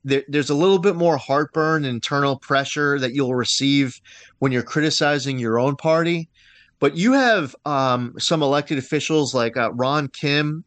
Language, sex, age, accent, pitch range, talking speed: English, male, 30-49, American, 140-170 Hz, 155 wpm